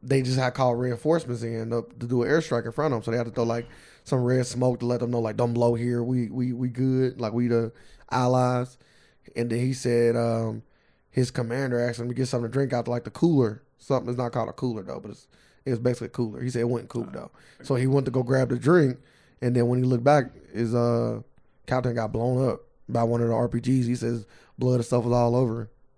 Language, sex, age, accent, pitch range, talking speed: English, male, 20-39, American, 120-130 Hz, 250 wpm